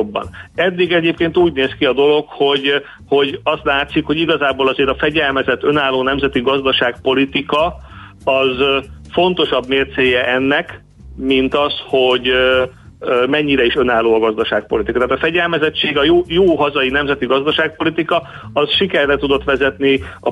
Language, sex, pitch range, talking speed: Hungarian, male, 130-150 Hz, 135 wpm